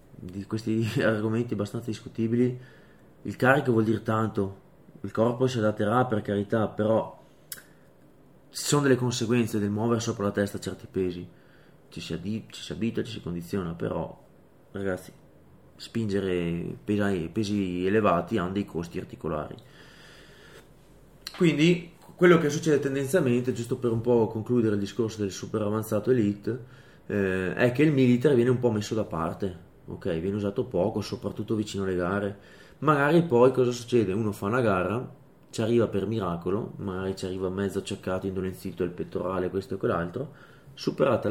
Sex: male